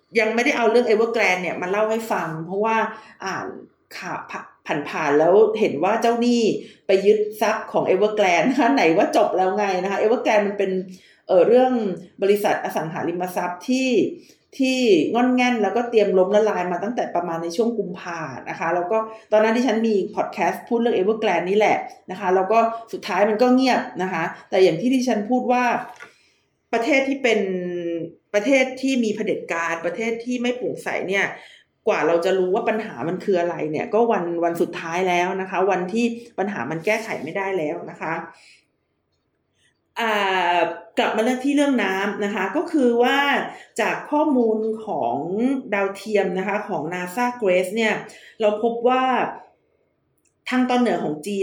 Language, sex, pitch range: Thai, female, 185-240 Hz